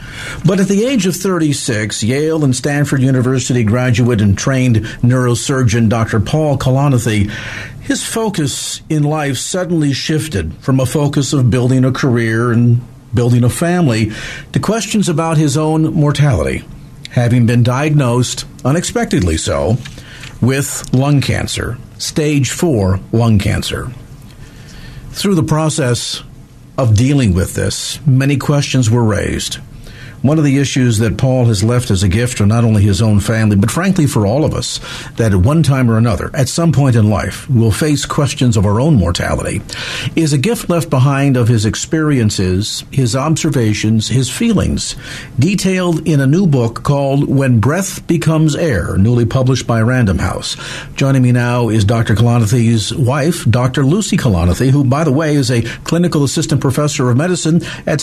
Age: 50-69